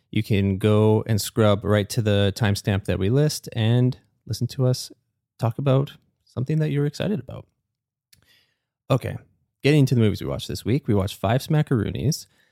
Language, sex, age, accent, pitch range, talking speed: English, male, 30-49, American, 105-135 Hz, 175 wpm